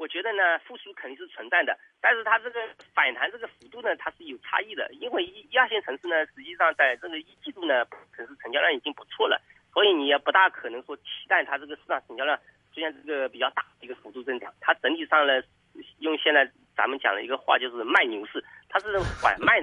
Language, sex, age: Chinese, male, 40-59